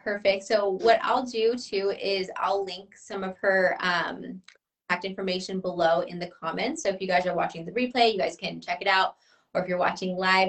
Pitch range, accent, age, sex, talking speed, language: 185-220 Hz, American, 20-39, female, 215 wpm, English